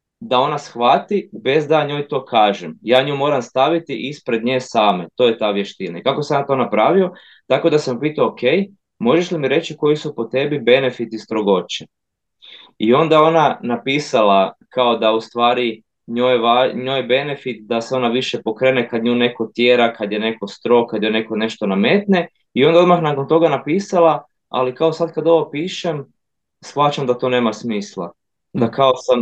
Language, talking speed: Croatian, 180 wpm